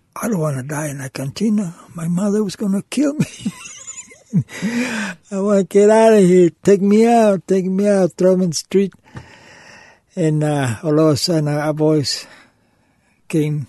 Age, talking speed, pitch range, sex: 60-79, 185 wpm, 145-195 Hz, male